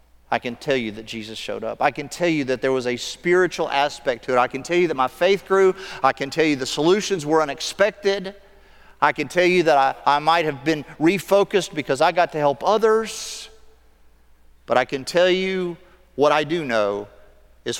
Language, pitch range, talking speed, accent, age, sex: English, 105-150 Hz, 210 wpm, American, 40-59, male